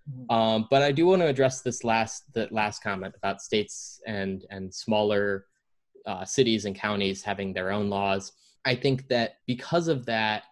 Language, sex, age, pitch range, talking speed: English, male, 20-39, 100-120 Hz, 175 wpm